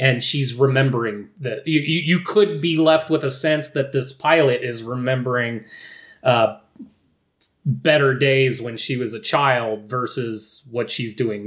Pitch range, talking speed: 125-160 Hz, 150 wpm